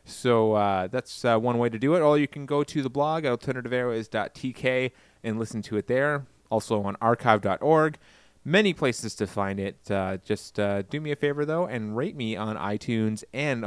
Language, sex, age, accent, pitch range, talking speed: English, male, 30-49, American, 110-140 Hz, 195 wpm